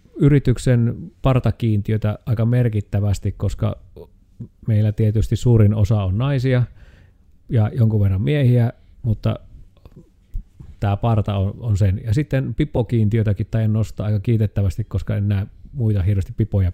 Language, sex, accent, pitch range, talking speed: Finnish, male, native, 100-135 Hz, 120 wpm